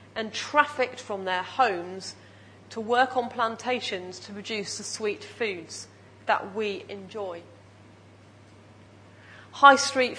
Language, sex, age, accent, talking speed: English, female, 40-59, British, 110 wpm